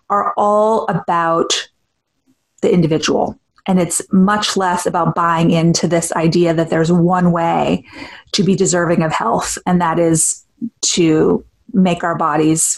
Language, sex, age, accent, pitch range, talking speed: English, female, 30-49, American, 165-195 Hz, 140 wpm